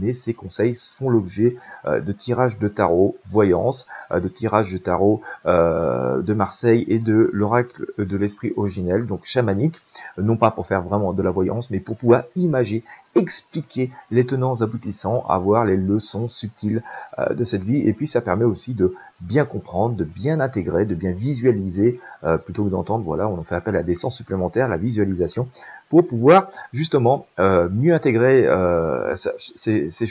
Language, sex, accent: French, male, French